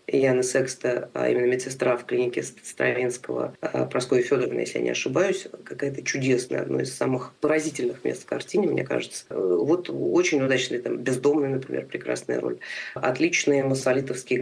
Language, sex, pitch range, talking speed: Russian, female, 120-150 Hz, 145 wpm